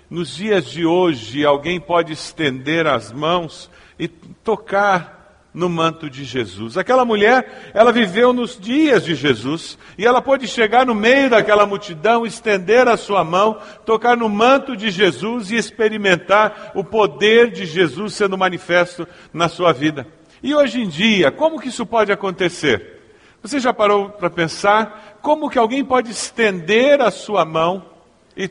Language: Portuguese